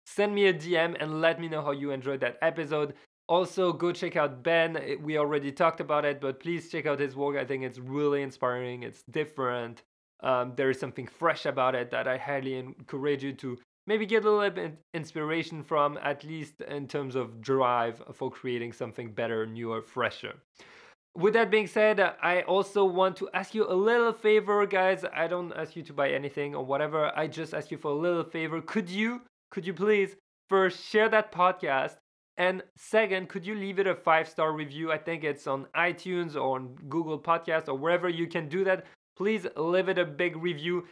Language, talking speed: English, 200 wpm